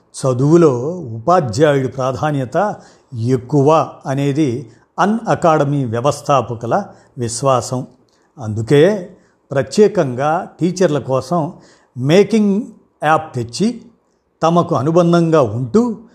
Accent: native